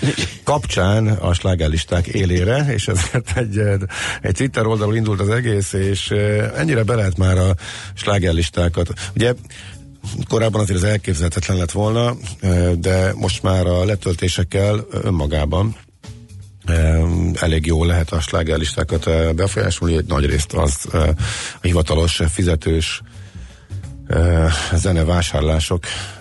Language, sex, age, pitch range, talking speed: Hungarian, male, 50-69, 85-105 Hz, 105 wpm